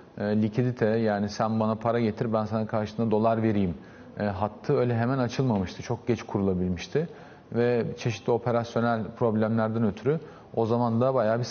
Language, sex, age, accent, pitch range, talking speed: Turkish, male, 40-59, native, 110-135 Hz, 150 wpm